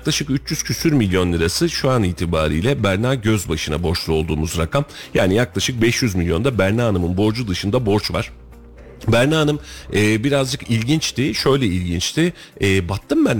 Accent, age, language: native, 40-59, Turkish